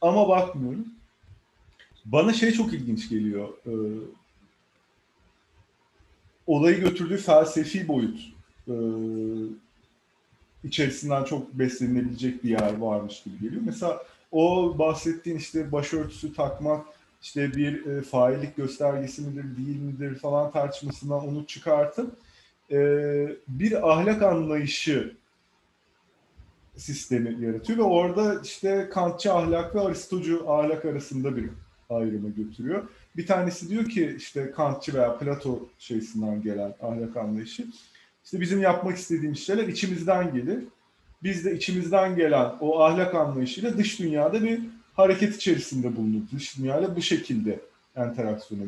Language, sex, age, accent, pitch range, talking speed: English, male, 30-49, Turkish, 125-180 Hz, 115 wpm